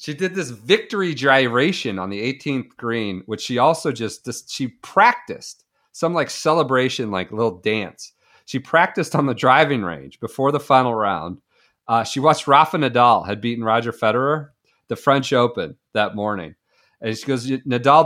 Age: 40-59